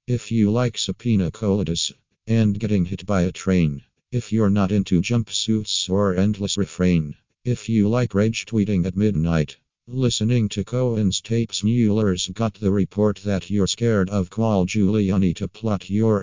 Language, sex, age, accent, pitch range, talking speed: English, male, 50-69, American, 95-110 Hz, 160 wpm